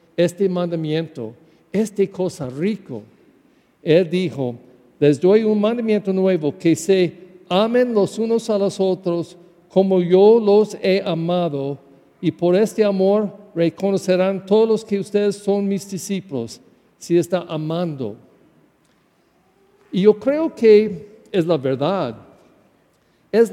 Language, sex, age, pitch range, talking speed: English, male, 50-69, 165-210 Hz, 120 wpm